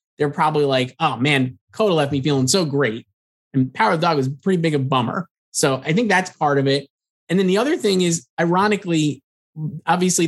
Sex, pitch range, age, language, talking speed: male, 130-165 Hz, 20-39, English, 210 wpm